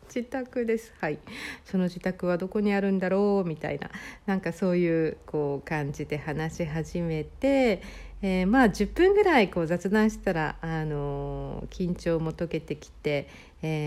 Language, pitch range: Japanese, 150-210 Hz